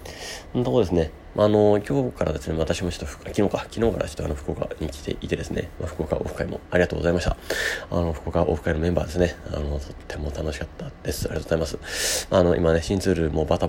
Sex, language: male, Japanese